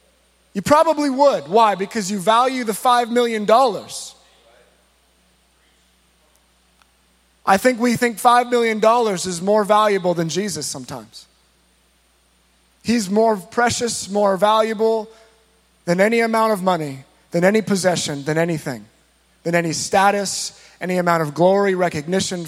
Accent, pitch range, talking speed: American, 170-225 Hz, 120 wpm